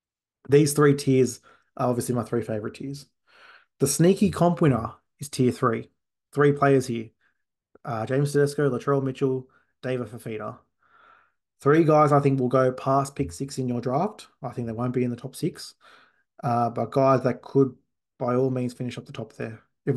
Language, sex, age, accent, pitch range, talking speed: English, male, 20-39, Australian, 120-135 Hz, 185 wpm